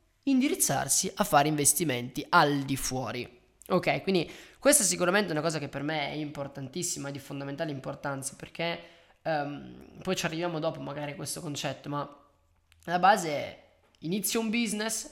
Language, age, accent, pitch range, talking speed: Italian, 20-39, native, 150-205 Hz, 160 wpm